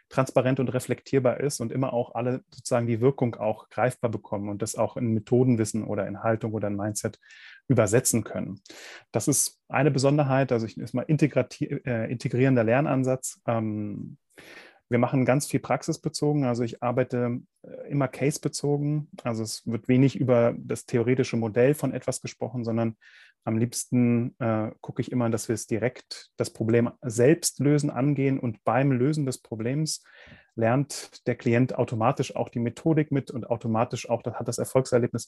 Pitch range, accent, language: 115-135 Hz, German, German